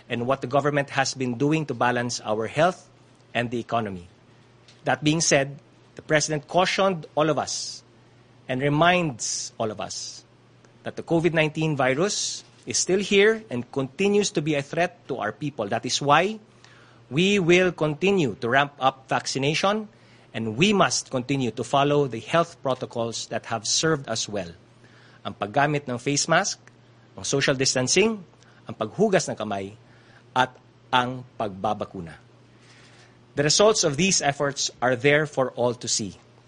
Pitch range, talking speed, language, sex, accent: 120-150 Hz, 150 wpm, Filipino, male, native